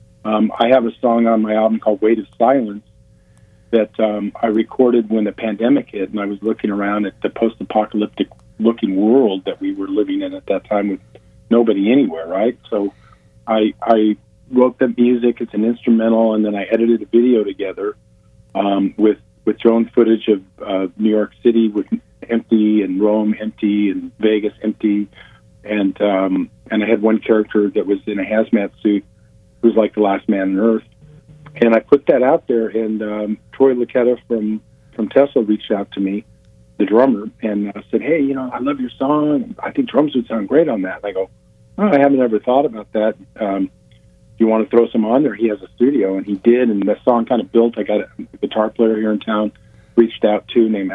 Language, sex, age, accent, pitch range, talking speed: English, male, 50-69, American, 105-120 Hz, 205 wpm